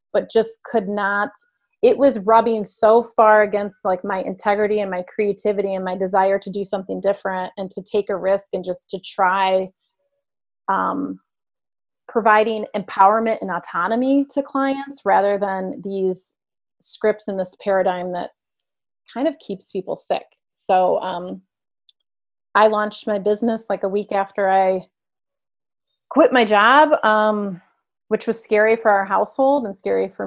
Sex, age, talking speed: female, 30-49, 150 wpm